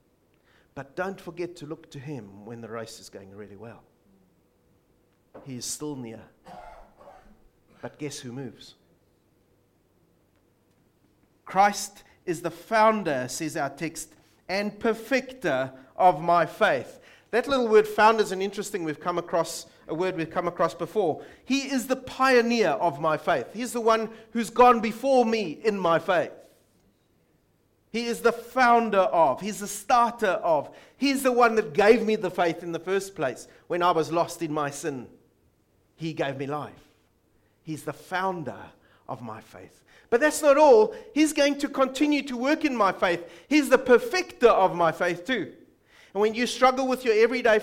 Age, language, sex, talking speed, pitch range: 40-59, English, male, 165 wpm, 155-235 Hz